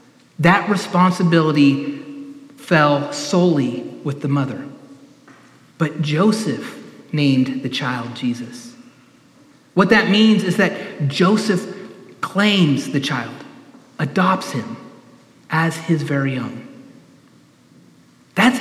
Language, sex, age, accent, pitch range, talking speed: English, male, 30-49, American, 160-215 Hz, 95 wpm